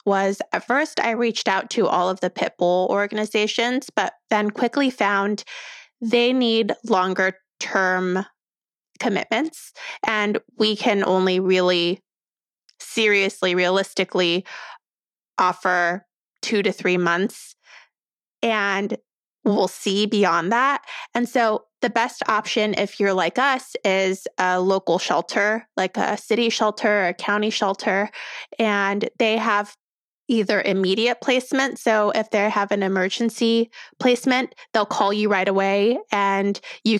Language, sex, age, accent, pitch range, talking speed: English, female, 20-39, American, 195-230 Hz, 130 wpm